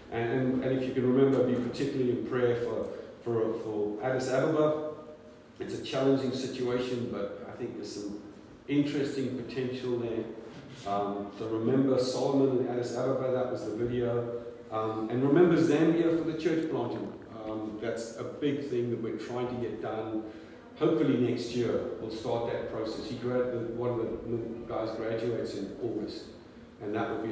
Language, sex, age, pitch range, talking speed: English, male, 50-69, 110-130 Hz, 170 wpm